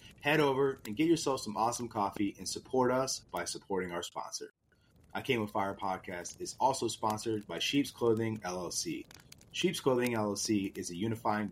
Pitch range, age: 105-135 Hz, 30-49